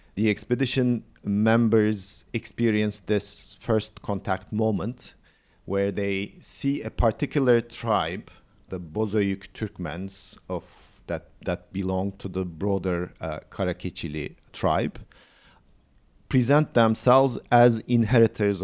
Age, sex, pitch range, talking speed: 50-69, male, 95-115 Hz, 95 wpm